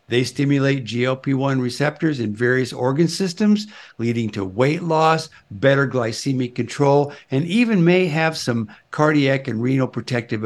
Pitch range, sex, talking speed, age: 120-150 Hz, male, 140 wpm, 60-79